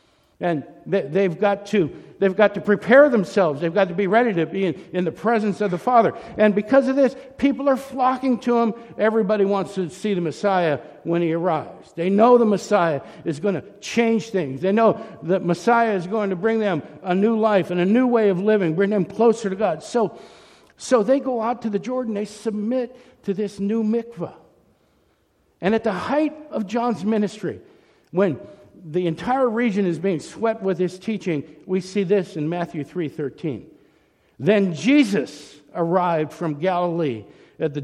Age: 60-79